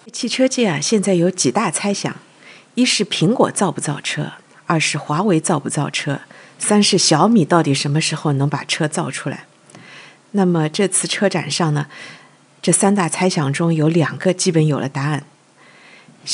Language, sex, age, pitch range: Chinese, female, 50-69, 150-185 Hz